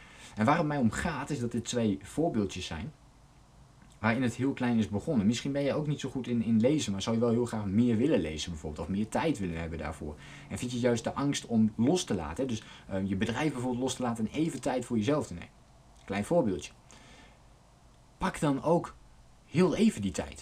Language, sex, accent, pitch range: Dutch, male, Dutch, 100-135 Hz